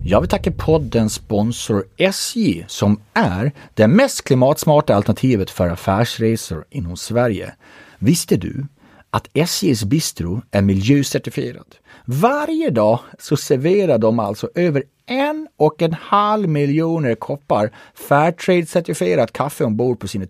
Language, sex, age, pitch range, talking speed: English, male, 30-49, 100-150 Hz, 120 wpm